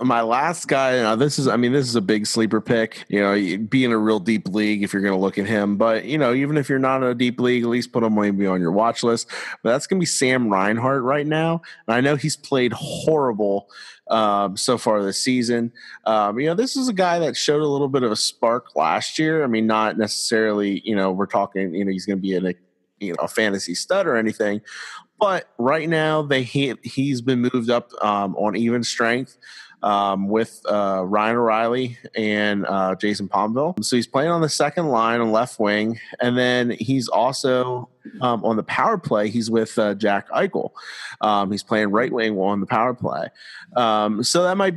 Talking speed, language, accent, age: 225 wpm, English, American, 30-49